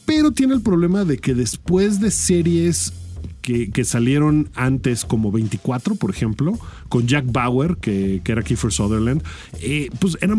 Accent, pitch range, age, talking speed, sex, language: Mexican, 110-155 Hz, 40-59, 165 wpm, male, Spanish